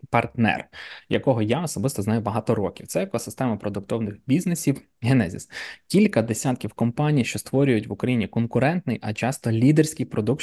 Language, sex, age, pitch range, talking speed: Ukrainian, male, 20-39, 110-135 Hz, 140 wpm